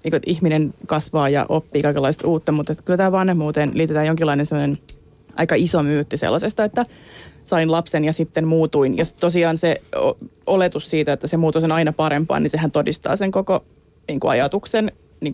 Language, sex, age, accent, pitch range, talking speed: Finnish, female, 30-49, native, 155-185 Hz, 170 wpm